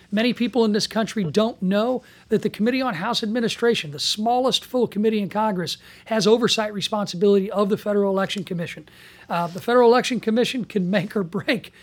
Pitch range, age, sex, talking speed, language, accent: 190-225 Hz, 40-59, male, 185 wpm, English, American